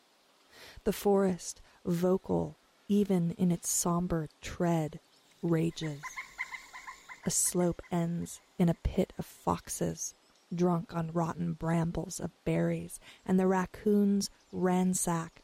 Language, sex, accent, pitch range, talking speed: English, female, American, 165-185 Hz, 105 wpm